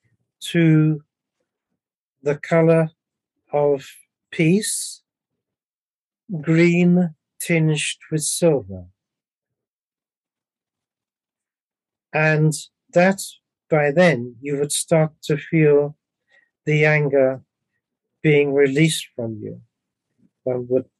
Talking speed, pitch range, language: 75 wpm, 140-170 Hz, English